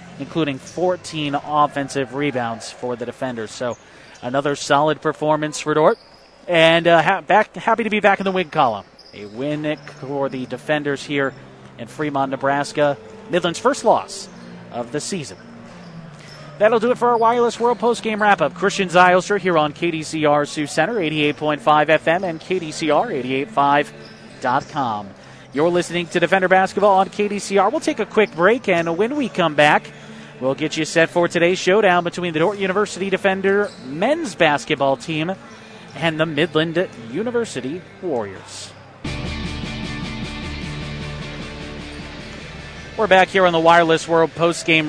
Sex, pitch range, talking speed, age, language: male, 145-190 Hz, 140 wpm, 30-49, English